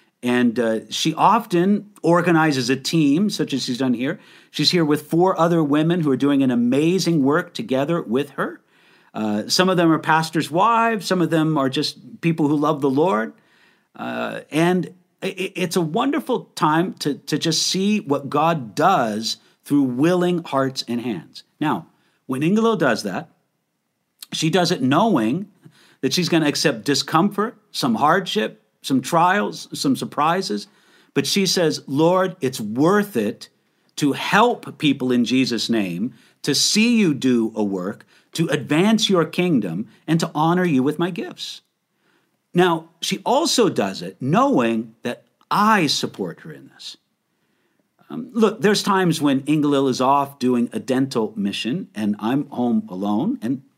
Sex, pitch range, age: male, 135-185 Hz, 50-69